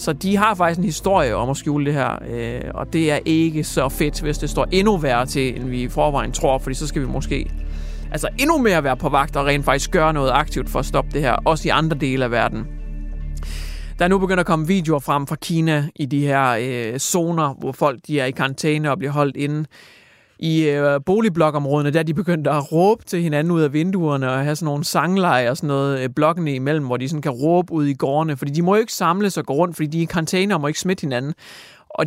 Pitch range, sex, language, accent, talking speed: 140-175 Hz, male, Danish, native, 245 wpm